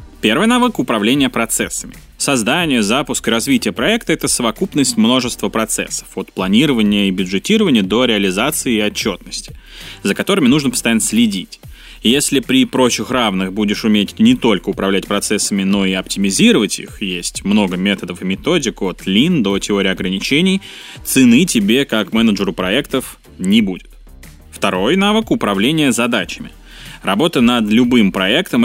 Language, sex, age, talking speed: Russian, male, 20-39, 135 wpm